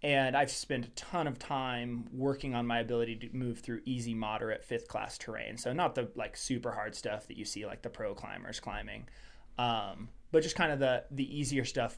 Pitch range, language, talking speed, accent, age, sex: 115-135 Hz, English, 215 wpm, American, 20-39, male